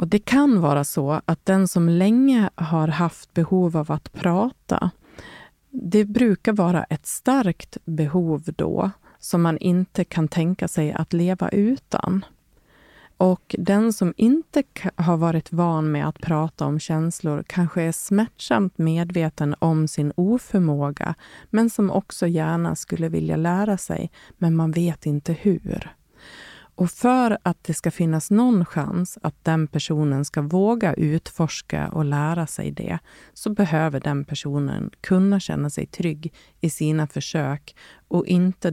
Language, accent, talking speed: Swedish, native, 145 wpm